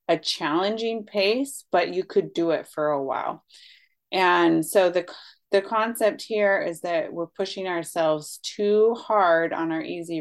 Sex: female